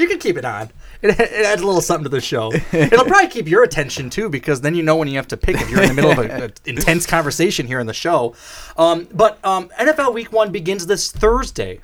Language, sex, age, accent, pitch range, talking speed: English, male, 30-49, American, 120-175 Hz, 260 wpm